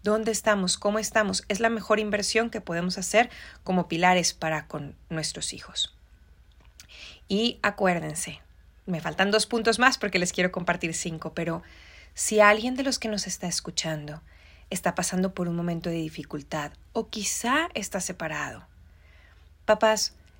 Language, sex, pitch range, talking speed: Spanish, female, 155-210 Hz, 145 wpm